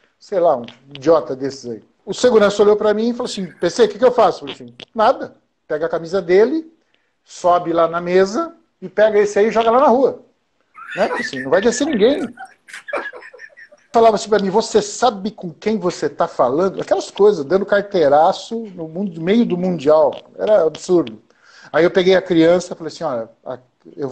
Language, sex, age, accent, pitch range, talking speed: Portuguese, male, 50-69, Brazilian, 170-235 Hz, 195 wpm